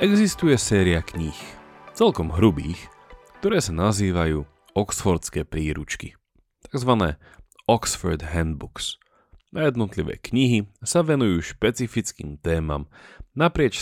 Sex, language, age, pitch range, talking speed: male, Slovak, 30-49, 80-110 Hz, 85 wpm